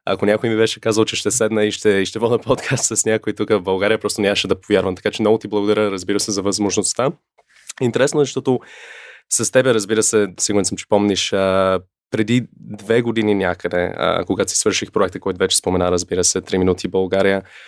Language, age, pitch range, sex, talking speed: Bulgarian, 20-39, 100-110 Hz, male, 200 wpm